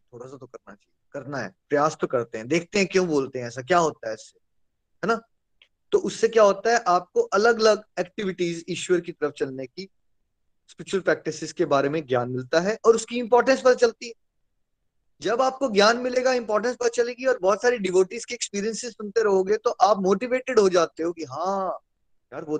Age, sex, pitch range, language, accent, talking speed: 20-39, male, 155-220 Hz, Hindi, native, 200 wpm